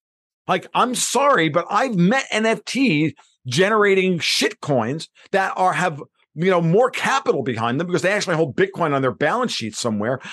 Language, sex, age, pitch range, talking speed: English, male, 50-69, 120-195 Hz, 170 wpm